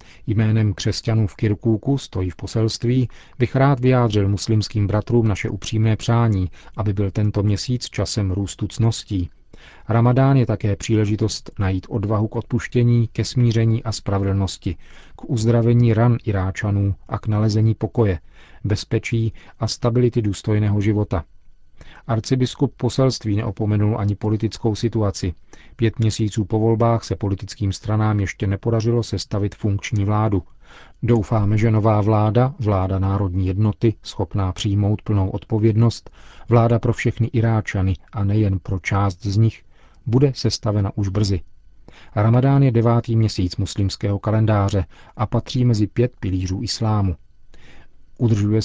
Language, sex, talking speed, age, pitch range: Czech, male, 125 wpm, 40-59, 100-115 Hz